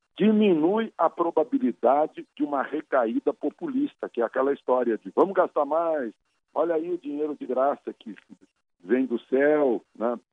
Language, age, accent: Portuguese, 60-79, Brazilian